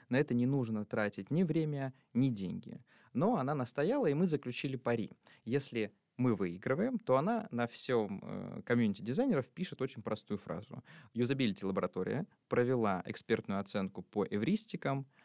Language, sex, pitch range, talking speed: Russian, male, 115-165 Hz, 145 wpm